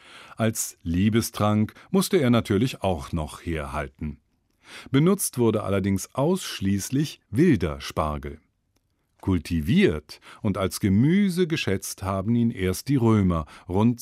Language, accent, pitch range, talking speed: German, German, 95-135 Hz, 105 wpm